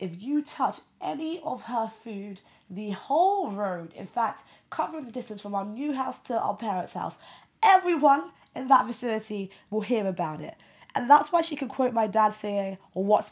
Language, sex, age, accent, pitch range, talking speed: English, female, 20-39, British, 185-250 Hz, 185 wpm